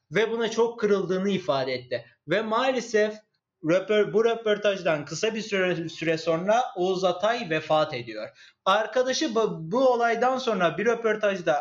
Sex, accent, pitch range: male, native, 170-215 Hz